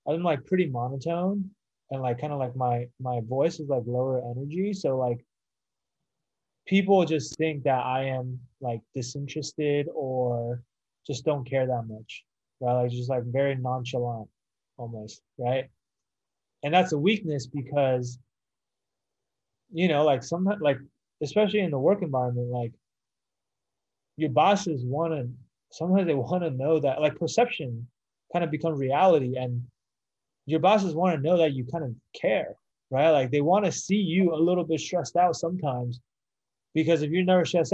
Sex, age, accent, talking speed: male, 20-39, American, 155 wpm